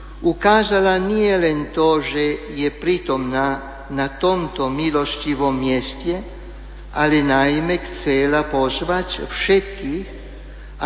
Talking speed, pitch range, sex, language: 90 wpm, 140-175 Hz, male, Slovak